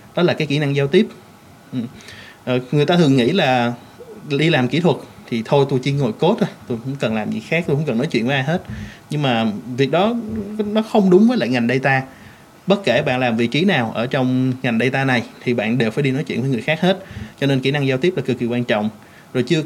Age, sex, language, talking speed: 20-39, male, Vietnamese, 255 wpm